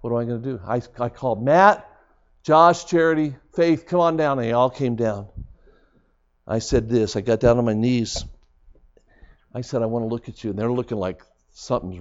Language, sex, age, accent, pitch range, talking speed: English, male, 50-69, American, 85-120 Hz, 215 wpm